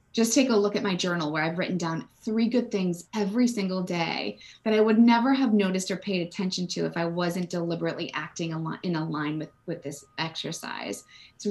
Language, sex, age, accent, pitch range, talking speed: English, female, 20-39, American, 175-240 Hz, 210 wpm